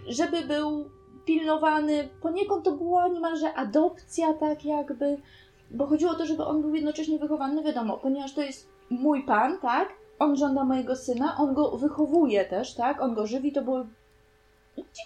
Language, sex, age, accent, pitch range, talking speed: Polish, female, 20-39, native, 255-305 Hz, 165 wpm